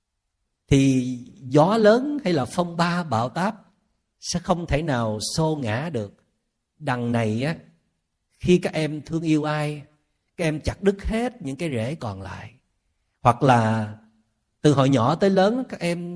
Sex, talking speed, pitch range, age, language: male, 165 wpm, 115-195 Hz, 50-69, Vietnamese